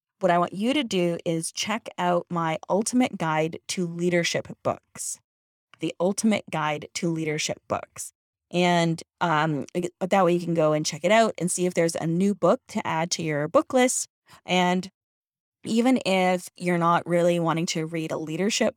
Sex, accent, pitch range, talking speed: female, American, 170-215 Hz, 180 wpm